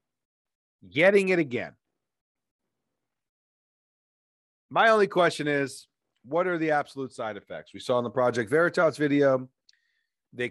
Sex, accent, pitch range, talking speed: male, American, 120-190 Hz, 120 wpm